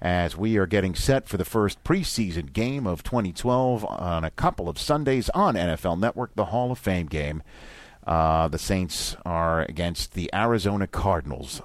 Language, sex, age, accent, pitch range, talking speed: English, male, 50-69, American, 80-115 Hz, 170 wpm